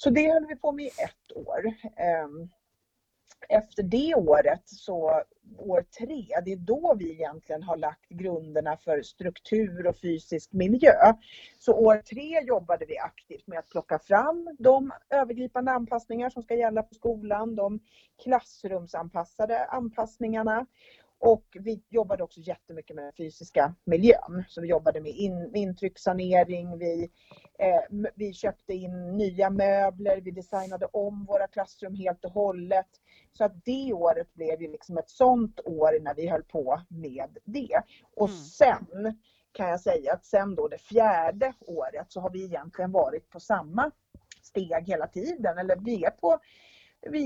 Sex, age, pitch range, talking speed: female, 40-59, 175-235 Hz, 150 wpm